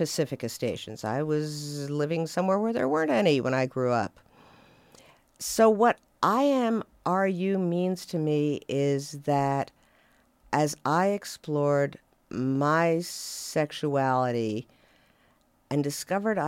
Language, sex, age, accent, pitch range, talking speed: English, female, 50-69, American, 135-175 Hz, 115 wpm